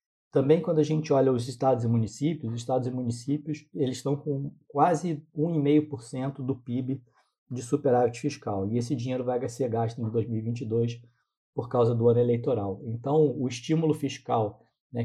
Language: Portuguese